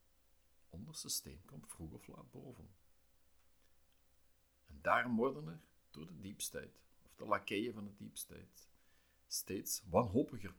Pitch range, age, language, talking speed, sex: 65-95 Hz, 50-69, Dutch, 120 wpm, male